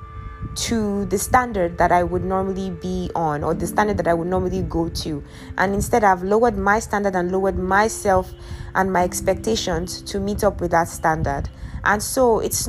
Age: 20-39